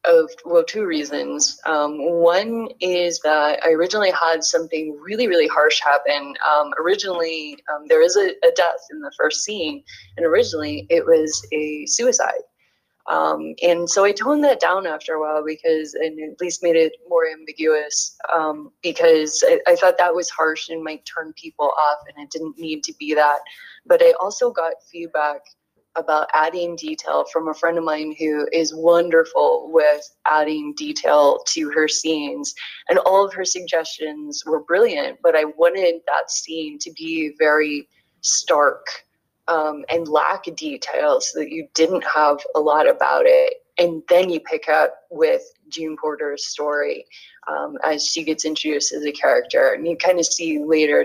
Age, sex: 20-39, female